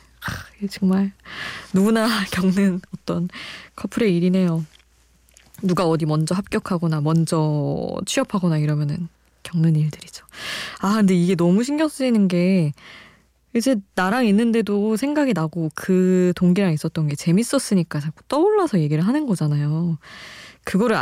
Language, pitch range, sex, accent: Korean, 155-205 Hz, female, native